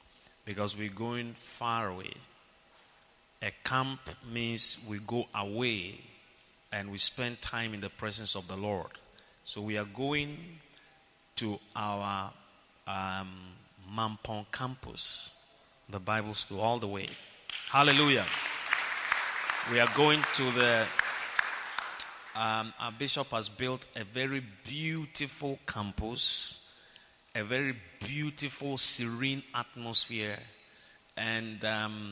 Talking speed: 110 wpm